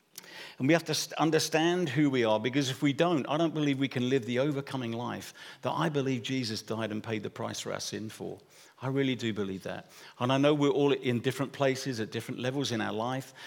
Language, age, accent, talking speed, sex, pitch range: English, 50-69, British, 235 wpm, male, 120-145 Hz